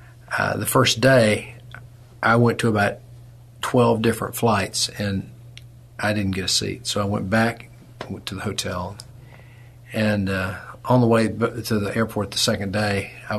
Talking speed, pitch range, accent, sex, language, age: 160 wpm, 105-120 Hz, American, male, English, 40-59